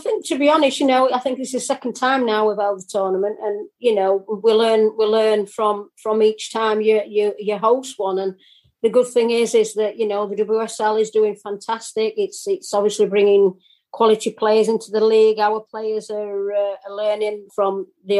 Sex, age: female, 30-49